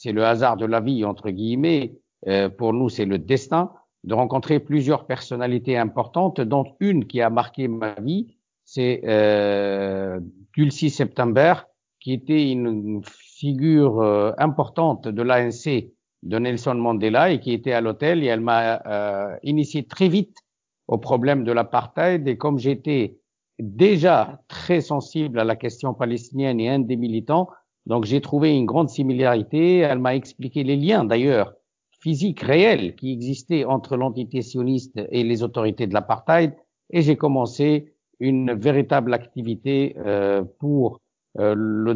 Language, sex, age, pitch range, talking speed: French, male, 50-69, 115-140 Hz, 150 wpm